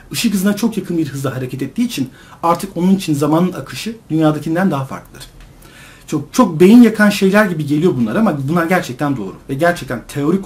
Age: 50-69